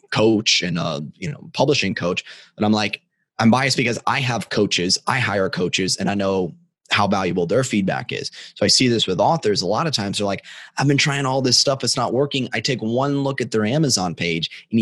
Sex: male